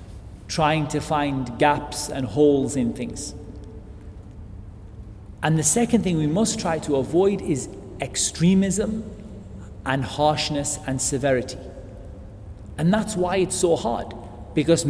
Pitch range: 110-180 Hz